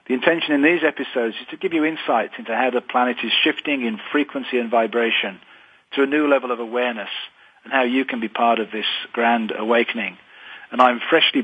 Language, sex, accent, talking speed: English, male, British, 205 wpm